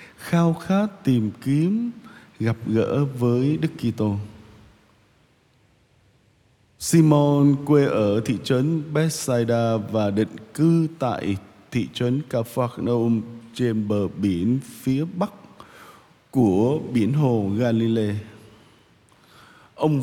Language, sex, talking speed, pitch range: Vietnamese, male, 95 wpm, 110-150 Hz